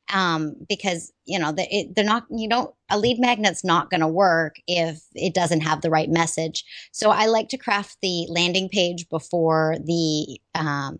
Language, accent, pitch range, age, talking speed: English, American, 160-190 Hz, 30-49, 180 wpm